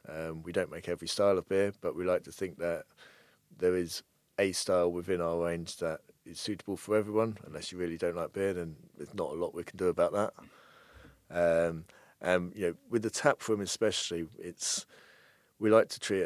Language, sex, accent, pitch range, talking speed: English, male, British, 80-95 Hz, 205 wpm